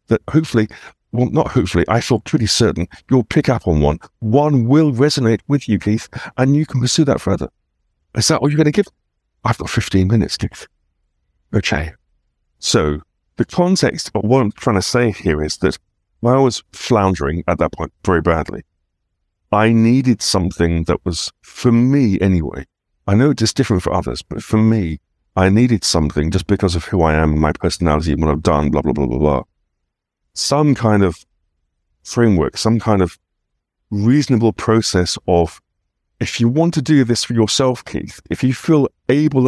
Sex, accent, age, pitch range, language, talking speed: male, British, 50-69, 85-125 Hz, English, 180 wpm